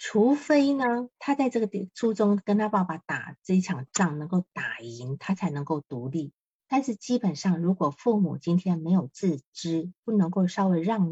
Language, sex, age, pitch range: Chinese, female, 50-69, 160-210 Hz